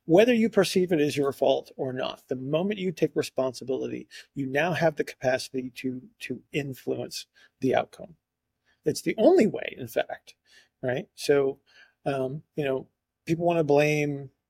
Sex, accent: male, American